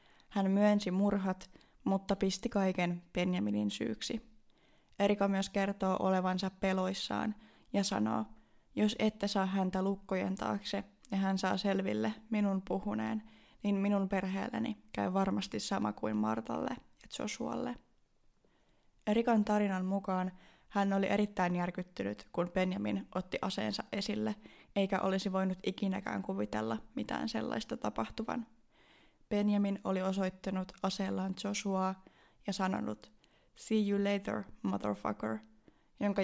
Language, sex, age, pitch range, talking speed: Finnish, female, 20-39, 185-200 Hz, 115 wpm